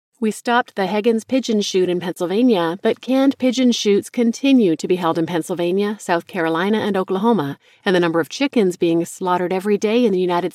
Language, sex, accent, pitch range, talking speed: English, female, American, 170-220 Hz, 195 wpm